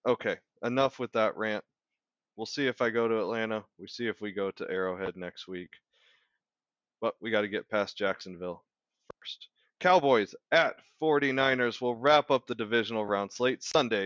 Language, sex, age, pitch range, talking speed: English, male, 20-39, 100-135 Hz, 170 wpm